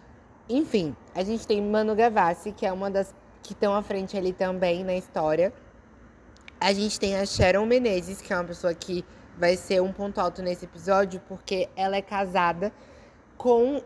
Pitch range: 185-230 Hz